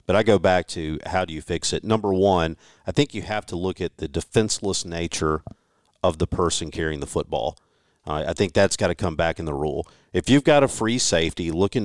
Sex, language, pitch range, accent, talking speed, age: male, English, 85-115 Hz, American, 235 wpm, 50-69